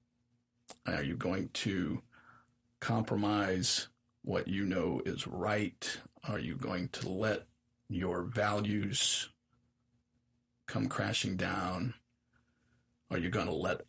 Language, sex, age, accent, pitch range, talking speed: English, male, 40-59, American, 105-120 Hz, 110 wpm